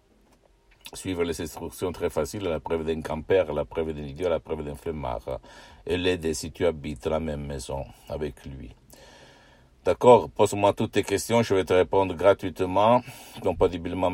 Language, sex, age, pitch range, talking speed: Italian, male, 60-79, 80-100 Hz, 170 wpm